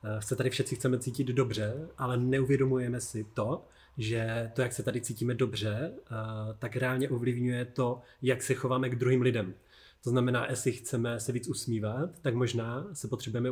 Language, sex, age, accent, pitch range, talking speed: Czech, male, 30-49, native, 110-130 Hz, 170 wpm